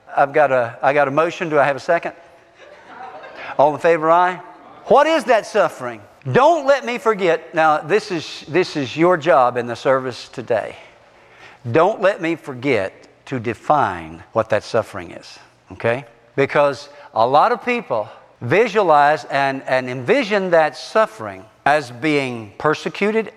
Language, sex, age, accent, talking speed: English, male, 50-69, American, 155 wpm